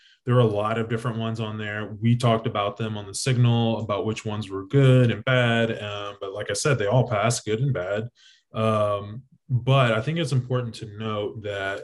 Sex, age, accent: male, 20-39, American